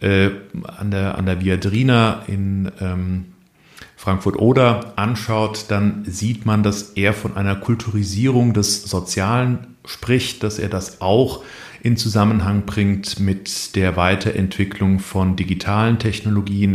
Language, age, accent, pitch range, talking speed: German, 40-59, German, 100-120 Hz, 120 wpm